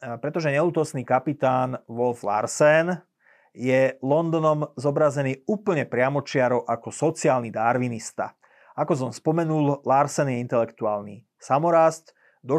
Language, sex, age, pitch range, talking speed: Slovak, male, 30-49, 120-145 Hz, 100 wpm